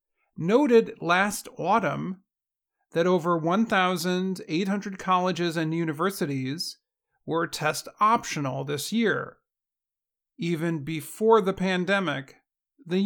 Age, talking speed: 40-59, 85 wpm